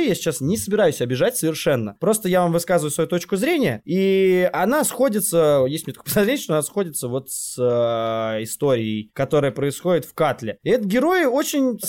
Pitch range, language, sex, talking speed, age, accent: 150-245 Hz, Russian, male, 170 wpm, 20-39, native